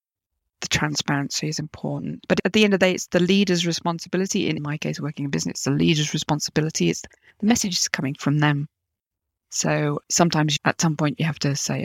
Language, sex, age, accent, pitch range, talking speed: English, female, 20-39, British, 140-175 Hz, 205 wpm